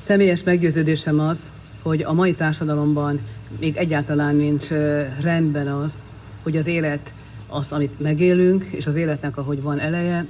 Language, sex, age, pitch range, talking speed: Hungarian, female, 50-69, 145-165 Hz, 140 wpm